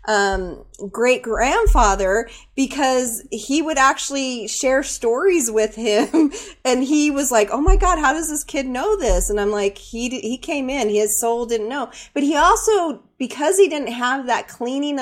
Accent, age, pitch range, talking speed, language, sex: American, 30-49, 220-280 Hz, 175 wpm, English, female